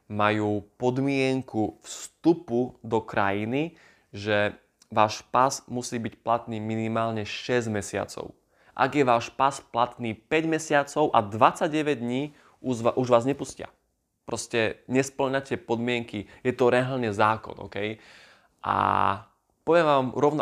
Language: Slovak